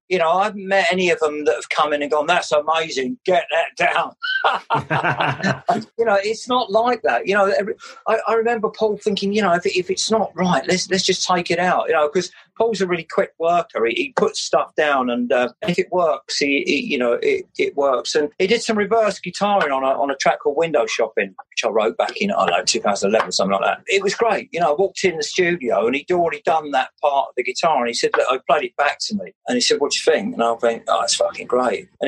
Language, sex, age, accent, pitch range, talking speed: English, male, 40-59, British, 150-235 Hz, 265 wpm